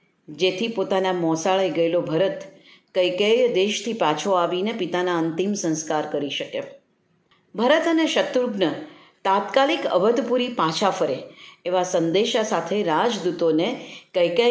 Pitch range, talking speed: 180-240 Hz, 110 wpm